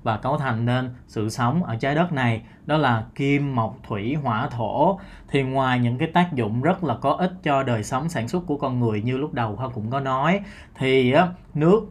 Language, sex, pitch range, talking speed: Vietnamese, male, 120-155 Hz, 220 wpm